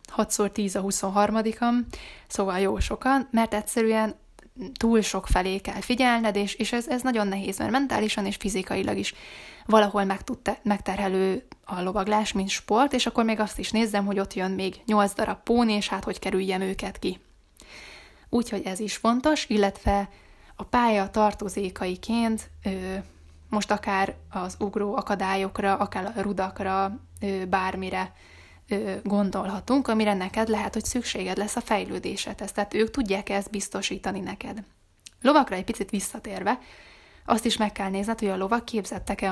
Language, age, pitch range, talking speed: Hungarian, 10-29, 195-225 Hz, 145 wpm